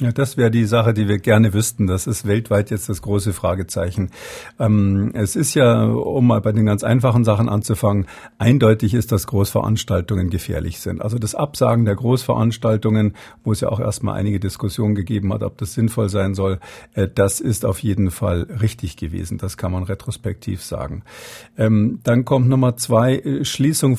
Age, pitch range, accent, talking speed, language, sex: 50-69, 105-125 Hz, German, 180 wpm, German, male